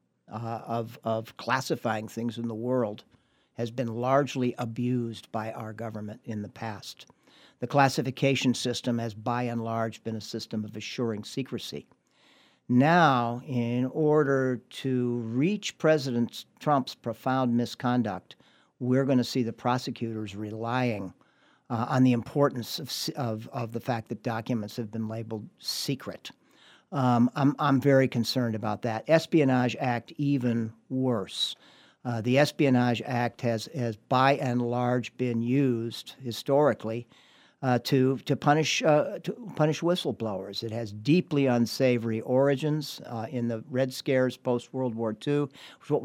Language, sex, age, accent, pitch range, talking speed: English, male, 50-69, American, 115-135 Hz, 140 wpm